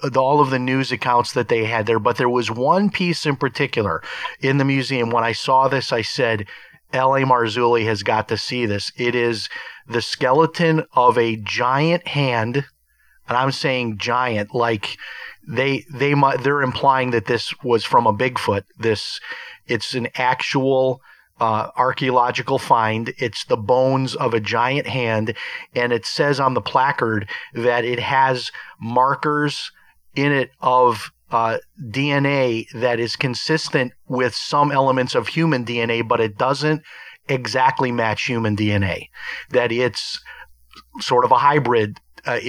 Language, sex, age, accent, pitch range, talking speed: English, male, 40-59, American, 115-135 Hz, 155 wpm